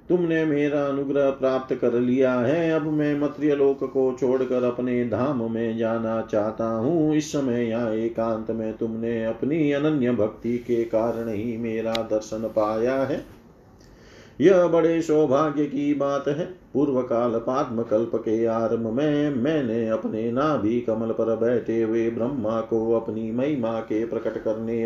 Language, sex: Hindi, male